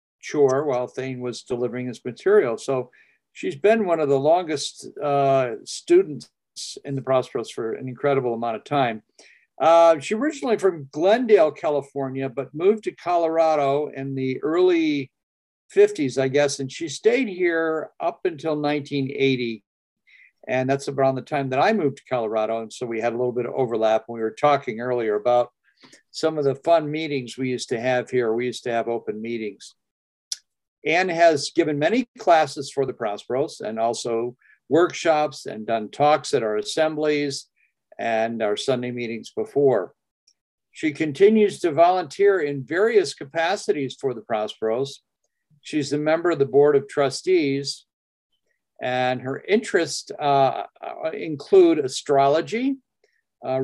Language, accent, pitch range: English, American, 125-175 Hz